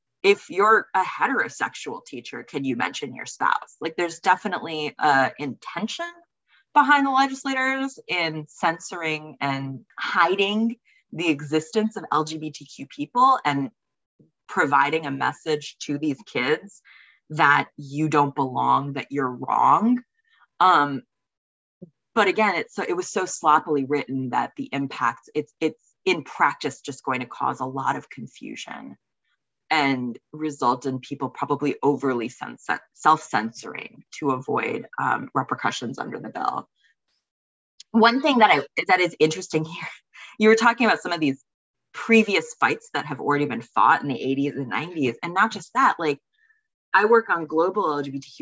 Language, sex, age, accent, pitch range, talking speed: English, female, 20-39, American, 140-205 Hz, 145 wpm